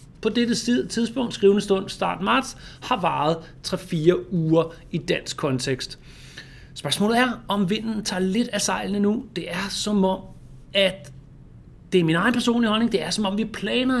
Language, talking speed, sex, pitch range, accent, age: Danish, 170 wpm, male, 155-210 Hz, native, 30-49